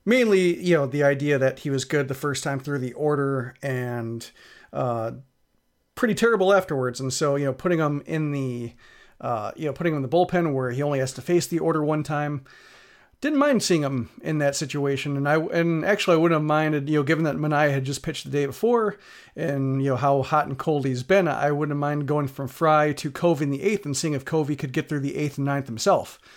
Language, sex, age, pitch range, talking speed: English, male, 40-59, 135-165 Hz, 235 wpm